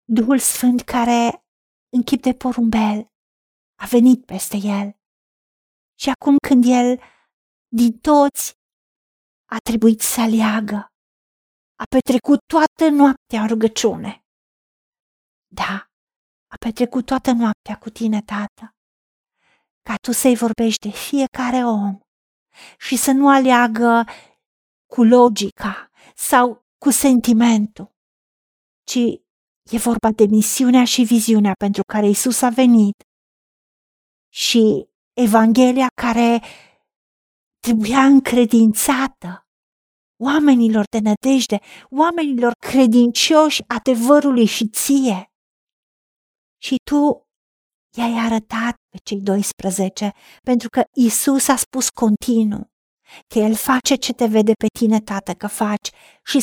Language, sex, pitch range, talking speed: Romanian, female, 215-255 Hz, 105 wpm